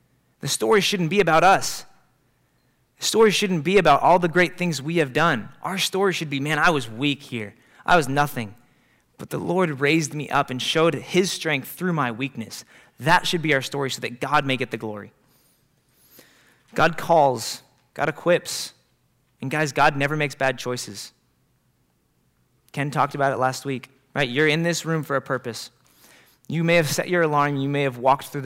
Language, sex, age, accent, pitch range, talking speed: English, male, 20-39, American, 125-160 Hz, 190 wpm